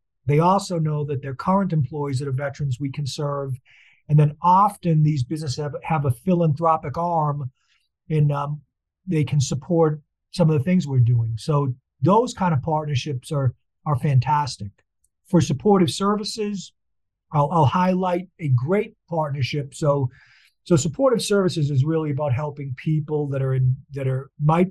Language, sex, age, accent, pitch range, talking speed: English, male, 50-69, American, 140-170 Hz, 160 wpm